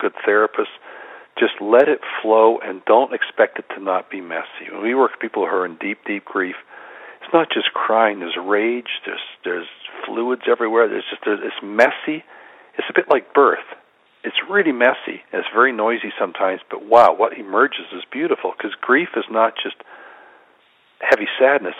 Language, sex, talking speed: English, male, 180 wpm